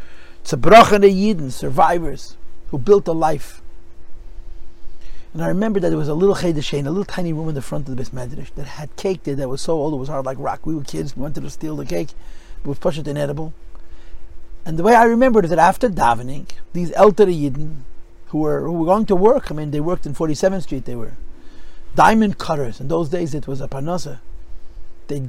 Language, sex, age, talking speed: English, male, 50-69, 215 wpm